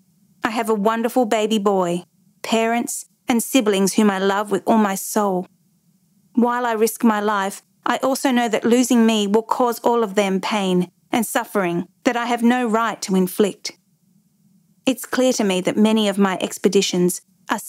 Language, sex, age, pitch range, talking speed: English, female, 40-59, 185-235 Hz, 175 wpm